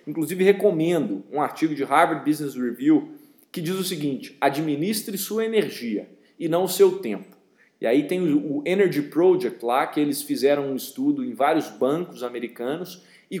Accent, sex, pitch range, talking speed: Brazilian, male, 160-235 Hz, 165 wpm